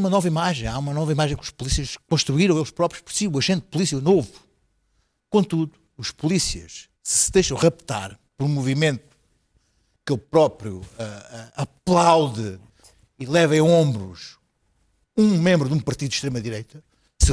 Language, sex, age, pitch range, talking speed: Portuguese, male, 50-69, 135-195 Hz, 155 wpm